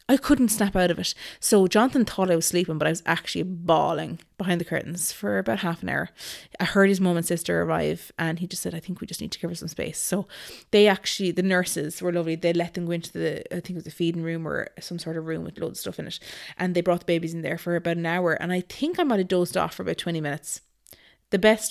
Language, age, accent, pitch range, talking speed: English, 20-39, Irish, 170-195 Hz, 280 wpm